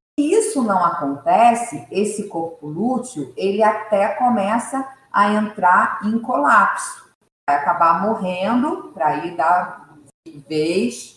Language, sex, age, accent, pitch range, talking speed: Portuguese, female, 40-59, Brazilian, 155-235 Hz, 115 wpm